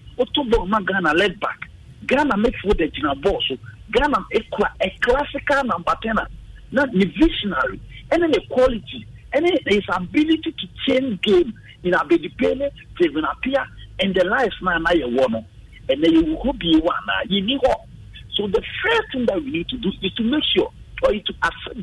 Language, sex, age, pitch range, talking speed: English, male, 50-69, 190-295 Hz, 160 wpm